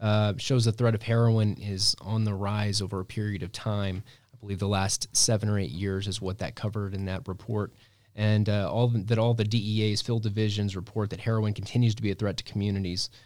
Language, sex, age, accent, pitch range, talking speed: English, male, 20-39, American, 100-115 Hz, 215 wpm